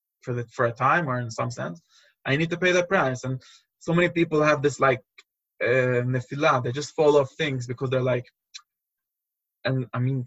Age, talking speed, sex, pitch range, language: 20-39, 200 wpm, male, 130-165 Hz, Hebrew